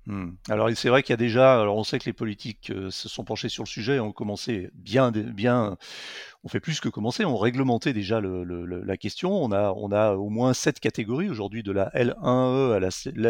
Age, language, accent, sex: 40-59, French, French, male